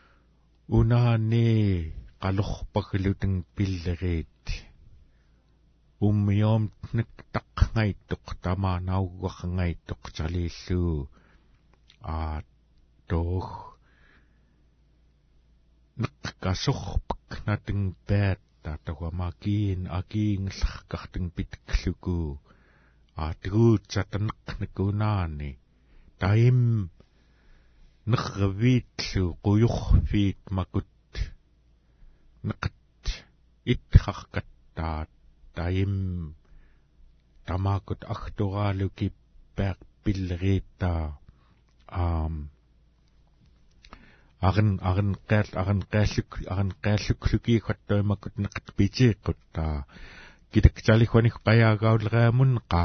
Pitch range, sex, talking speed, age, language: 80-105 Hz, male, 35 wpm, 60-79, English